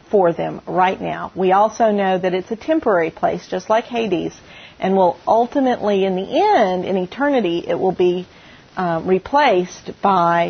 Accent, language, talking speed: American, English, 165 wpm